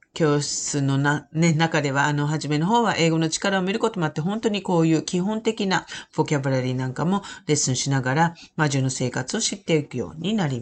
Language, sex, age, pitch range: Japanese, female, 40-59, 135-185 Hz